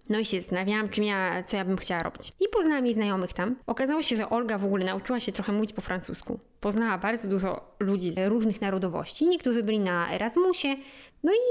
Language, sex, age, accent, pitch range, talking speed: Polish, female, 20-39, native, 195-250 Hz, 210 wpm